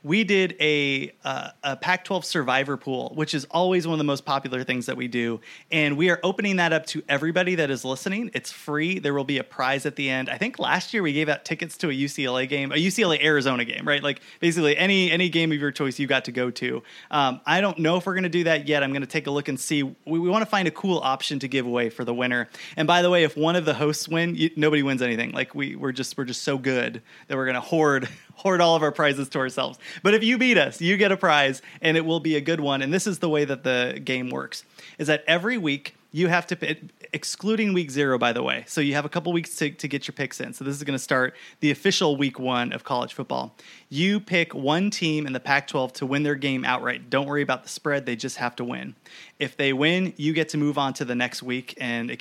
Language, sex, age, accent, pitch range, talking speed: English, male, 30-49, American, 135-170 Hz, 270 wpm